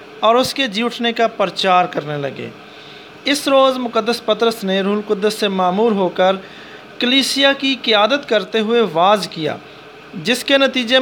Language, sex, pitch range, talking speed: English, male, 185-240 Hz, 145 wpm